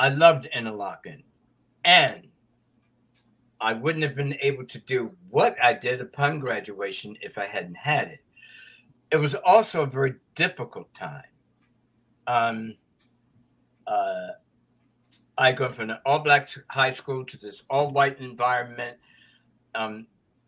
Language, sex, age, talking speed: English, male, 60-79, 125 wpm